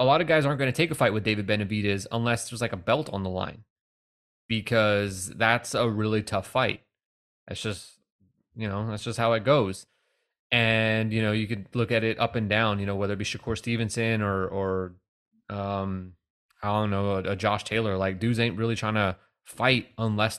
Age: 20-39